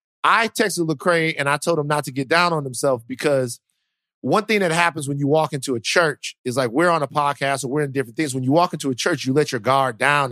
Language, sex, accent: English, male, American